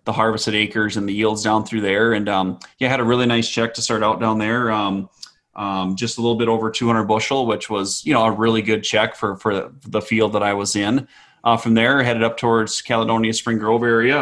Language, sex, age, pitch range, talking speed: English, male, 20-39, 105-115 Hz, 235 wpm